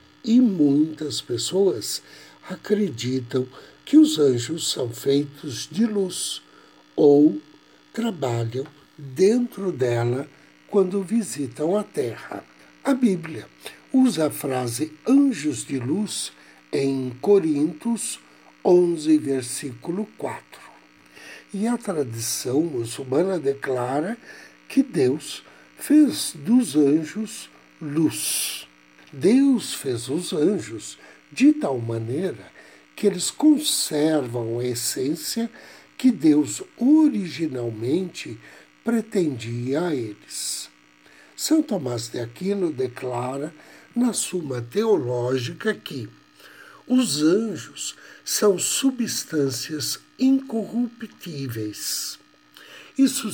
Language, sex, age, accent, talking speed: Portuguese, male, 60-79, Brazilian, 85 wpm